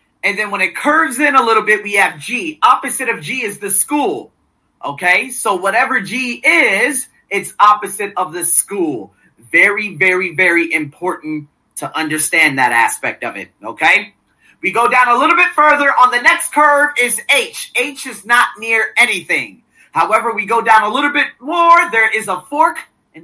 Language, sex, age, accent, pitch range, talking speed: English, male, 30-49, American, 180-265 Hz, 180 wpm